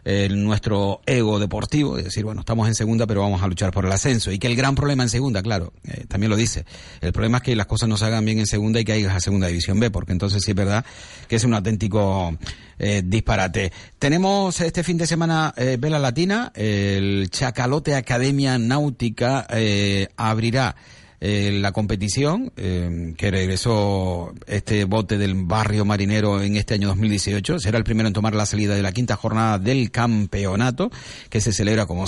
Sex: male